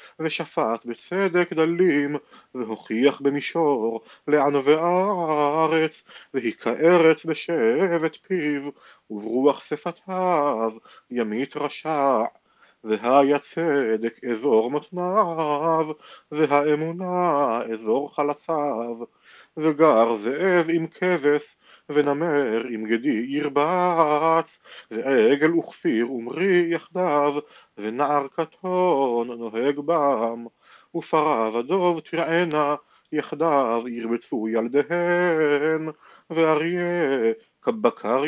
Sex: male